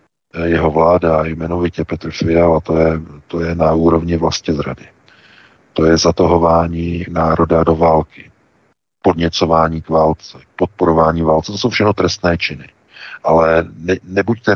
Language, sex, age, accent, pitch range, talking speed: Czech, male, 50-69, native, 80-90 Hz, 135 wpm